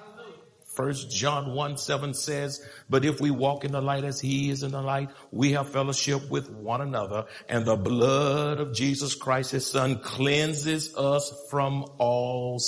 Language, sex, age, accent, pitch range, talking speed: English, male, 60-79, American, 140-195 Hz, 165 wpm